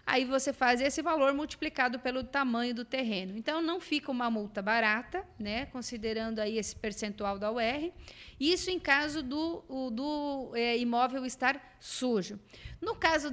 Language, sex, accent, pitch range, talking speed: Portuguese, female, Brazilian, 230-280 Hz, 160 wpm